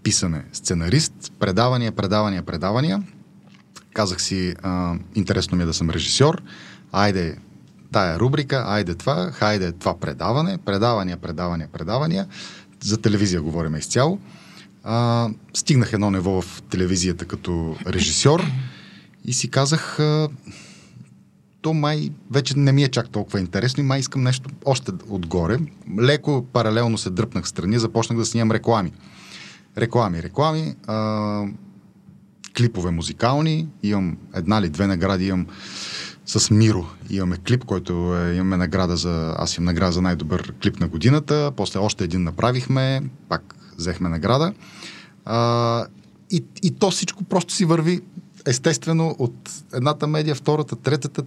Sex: male